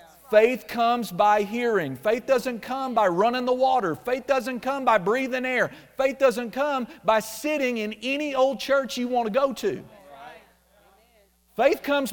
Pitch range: 160-255 Hz